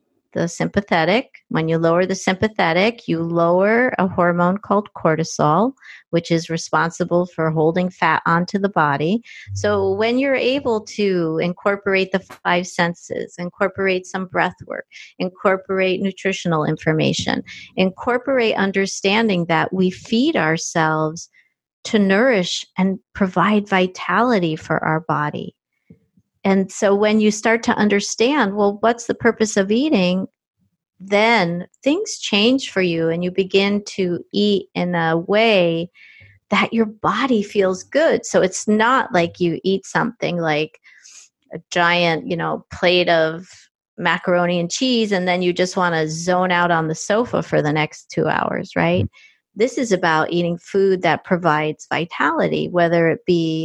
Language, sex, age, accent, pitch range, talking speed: English, female, 50-69, American, 170-210 Hz, 145 wpm